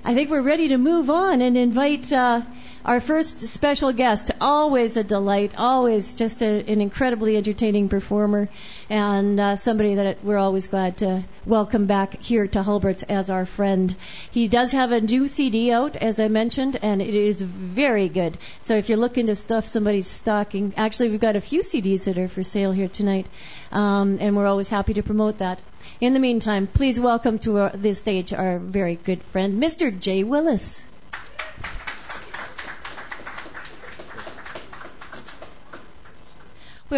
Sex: female